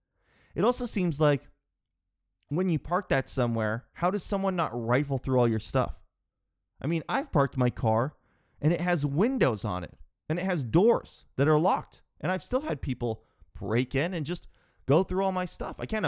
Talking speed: 200 wpm